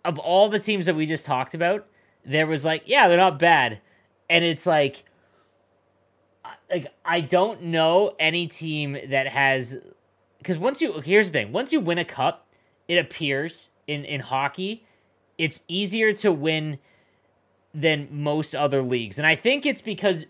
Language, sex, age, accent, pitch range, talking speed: English, male, 30-49, American, 135-180 Hz, 165 wpm